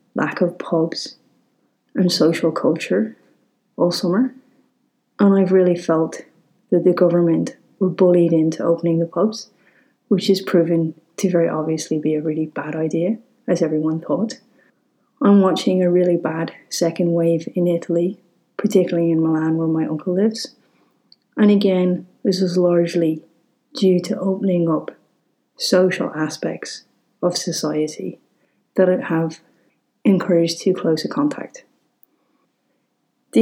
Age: 30-49